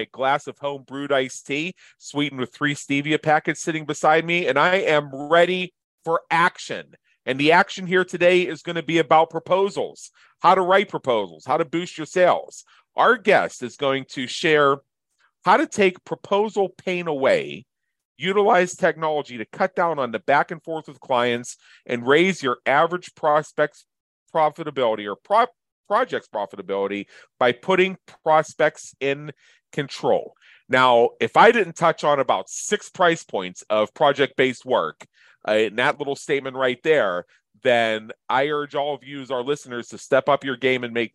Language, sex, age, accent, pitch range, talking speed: English, male, 40-59, American, 120-165 Hz, 170 wpm